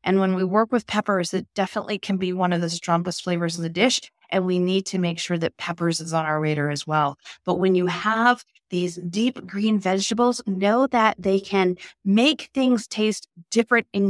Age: 30-49